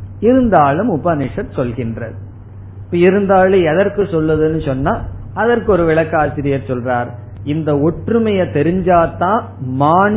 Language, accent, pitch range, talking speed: Tamil, native, 105-175 Hz, 85 wpm